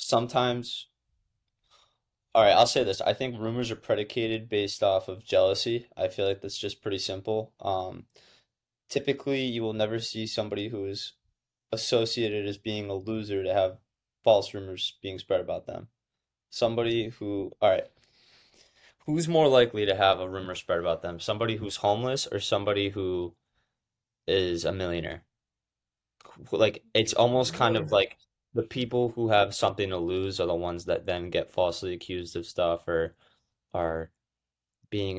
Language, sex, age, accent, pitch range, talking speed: English, male, 20-39, American, 85-110 Hz, 160 wpm